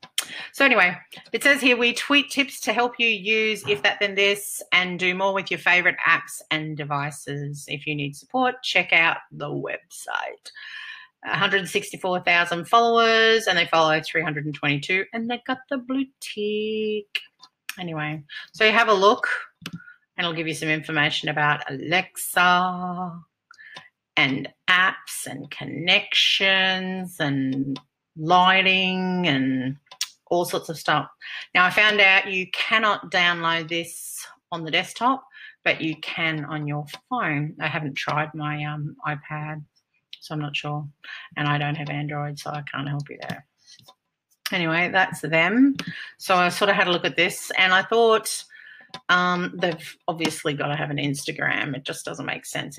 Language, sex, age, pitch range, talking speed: English, female, 40-59, 150-205 Hz, 155 wpm